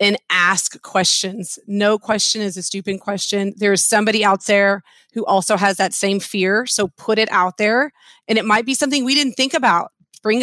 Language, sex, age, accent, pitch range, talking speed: English, female, 30-49, American, 195-230 Hz, 195 wpm